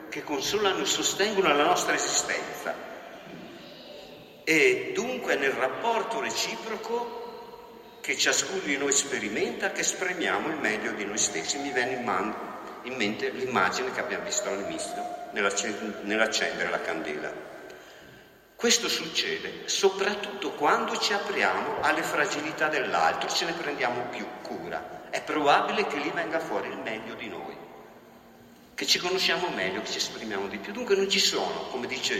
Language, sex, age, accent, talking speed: Italian, male, 50-69, native, 140 wpm